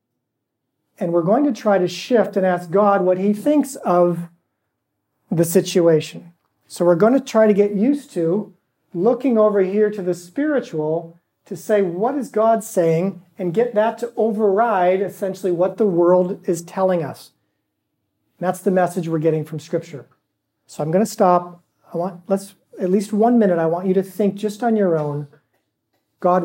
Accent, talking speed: American, 180 wpm